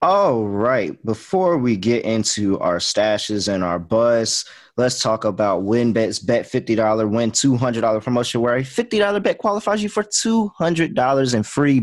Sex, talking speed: male, 150 wpm